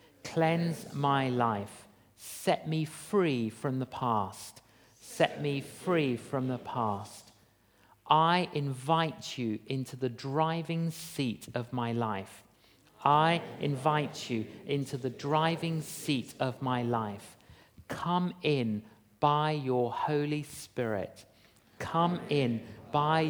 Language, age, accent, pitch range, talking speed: English, 50-69, British, 110-155 Hz, 115 wpm